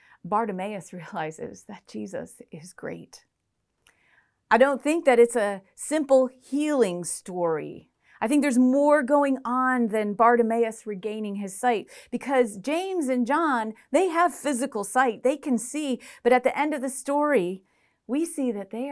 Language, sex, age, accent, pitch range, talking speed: English, female, 40-59, American, 205-265 Hz, 150 wpm